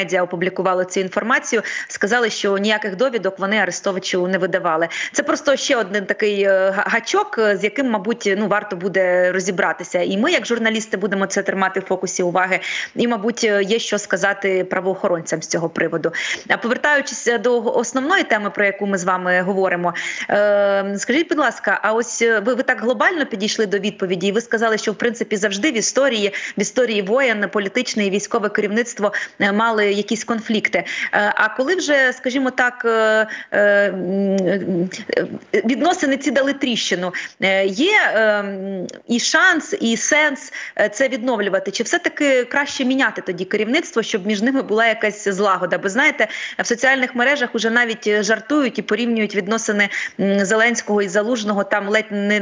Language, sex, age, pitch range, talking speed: Ukrainian, female, 20-39, 200-245 Hz, 150 wpm